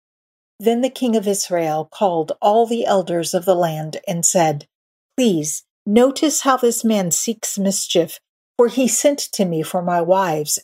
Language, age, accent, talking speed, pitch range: English, 50-69, American, 165 wpm, 175-230 Hz